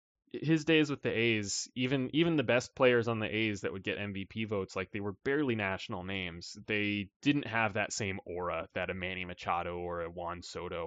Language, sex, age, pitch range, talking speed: English, male, 20-39, 95-120 Hz, 210 wpm